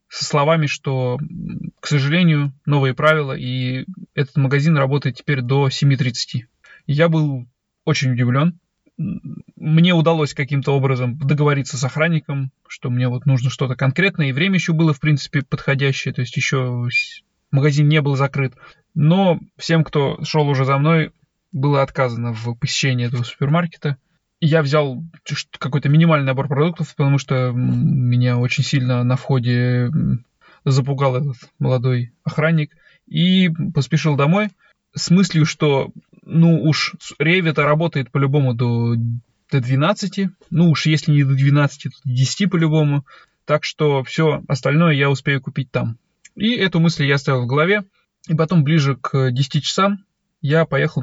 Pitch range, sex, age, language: 135-160 Hz, male, 20-39, Russian